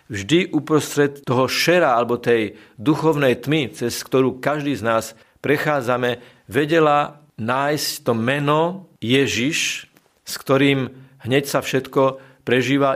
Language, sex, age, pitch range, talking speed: Slovak, male, 50-69, 115-145 Hz, 115 wpm